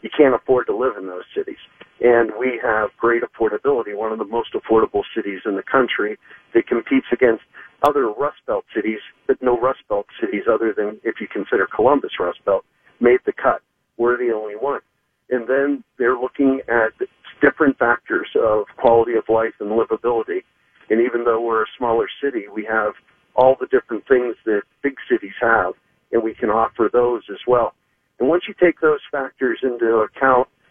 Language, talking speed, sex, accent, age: English, 185 wpm, male, American, 50-69